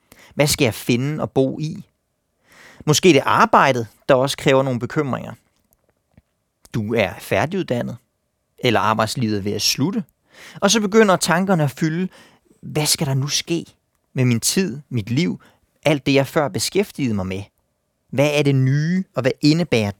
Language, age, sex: Danish, 30-49, male